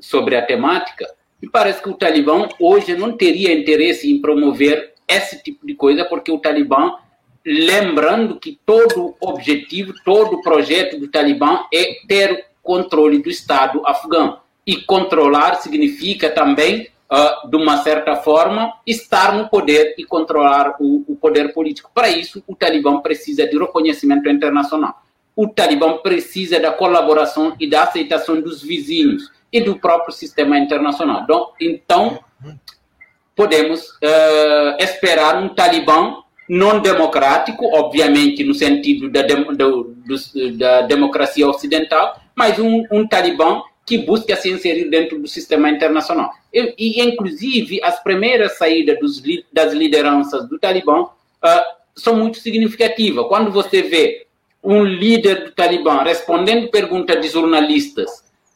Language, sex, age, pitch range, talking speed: Portuguese, male, 50-69, 150-230 Hz, 140 wpm